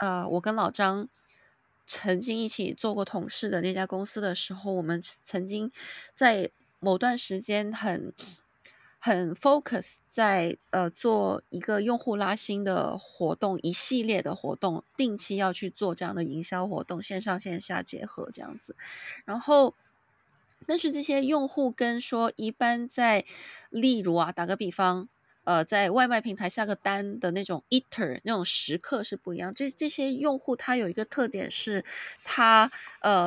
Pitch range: 185-240 Hz